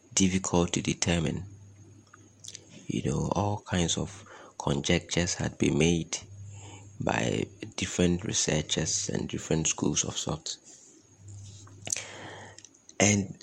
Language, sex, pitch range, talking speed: English, male, 85-100 Hz, 95 wpm